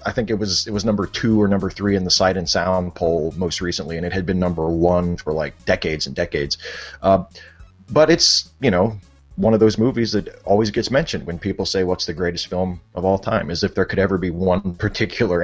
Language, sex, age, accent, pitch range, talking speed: English, male, 30-49, American, 90-115 Hz, 235 wpm